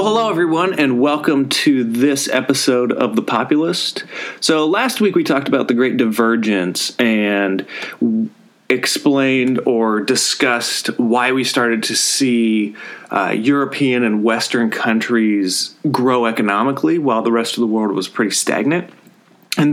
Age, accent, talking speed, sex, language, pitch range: 30-49, American, 140 wpm, male, English, 115-140 Hz